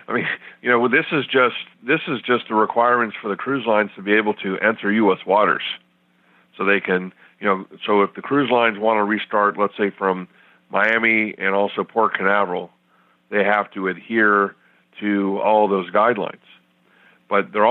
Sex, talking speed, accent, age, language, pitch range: male, 185 wpm, American, 50-69, English, 95-110 Hz